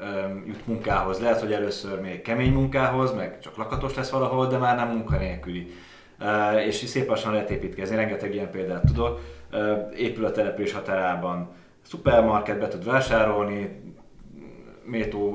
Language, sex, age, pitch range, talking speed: Hungarian, male, 30-49, 95-120 Hz, 130 wpm